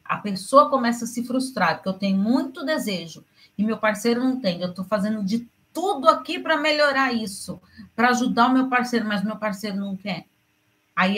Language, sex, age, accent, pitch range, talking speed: Portuguese, female, 40-59, Brazilian, 190-255 Hz, 195 wpm